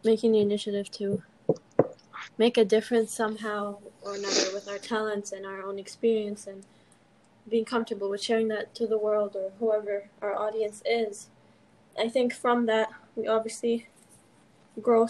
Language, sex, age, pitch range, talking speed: English, female, 10-29, 195-220 Hz, 150 wpm